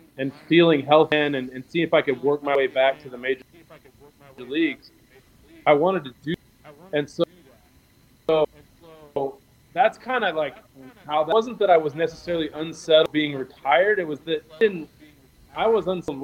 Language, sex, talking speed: English, male, 175 wpm